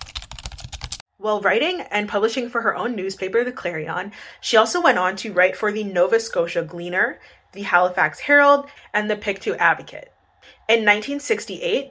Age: 20-39